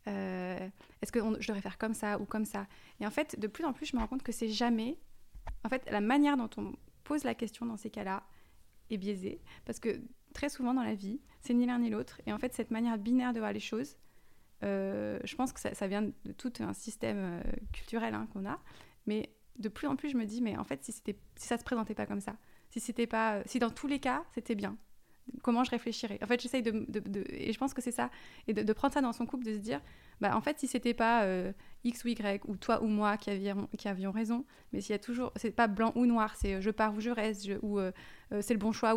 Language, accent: French, French